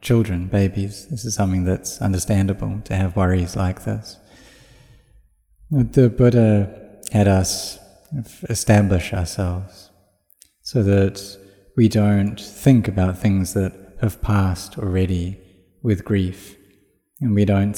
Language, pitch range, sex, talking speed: English, 95-105 Hz, male, 115 wpm